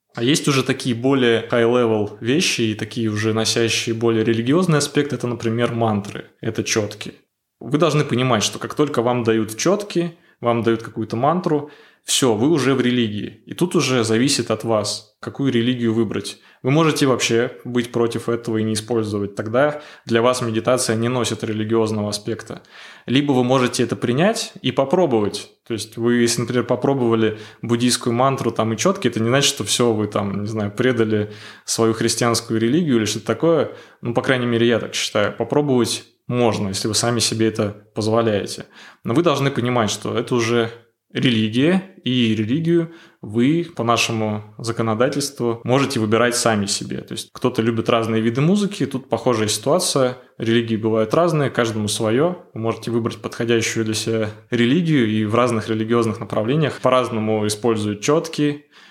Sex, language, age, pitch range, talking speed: male, Russian, 20-39, 110-130 Hz, 165 wpm